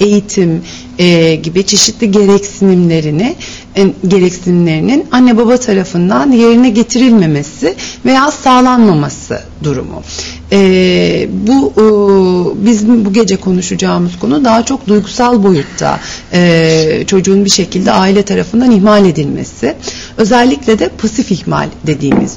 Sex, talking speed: female, 105 wpm